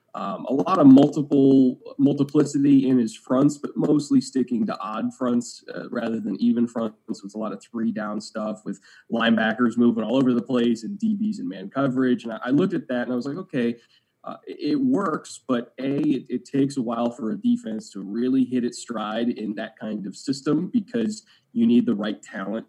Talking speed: 210 wpm